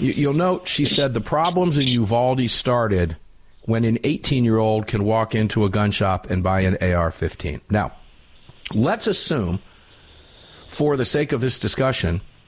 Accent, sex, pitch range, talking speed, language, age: American, male, 110-180 Hz, 150 wpm, English, 50-69